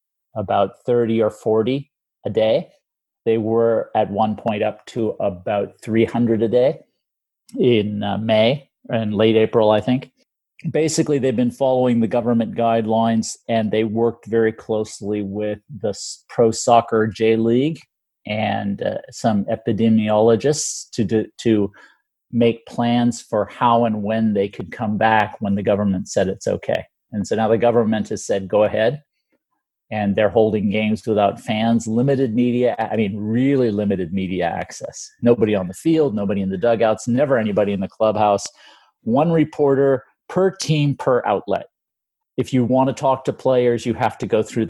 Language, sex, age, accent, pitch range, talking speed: English, male, 40-59, American, 105-120 Hz, 160 wpm